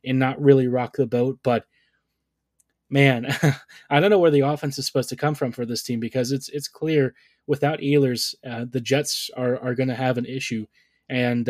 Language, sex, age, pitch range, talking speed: English, male, 20-39, 125-145 Hz, 205 wpm